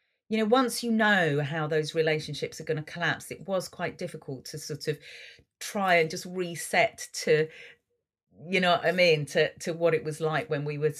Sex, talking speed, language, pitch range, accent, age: female, 200 wpm, English, 140-190 Hz, British, 40-59